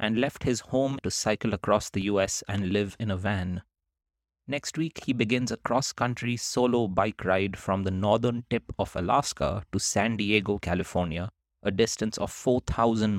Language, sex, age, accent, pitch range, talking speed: English, male, 30-49, Indian, 95-115 Hz, 170 wpm